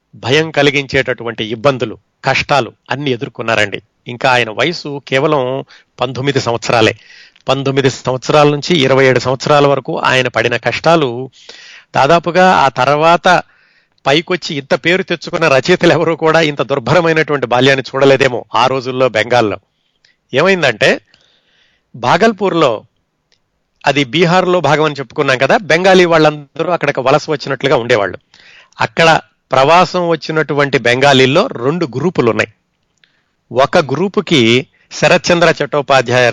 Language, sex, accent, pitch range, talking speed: Telugu, male, native, 130-170 Hz, 105 wpm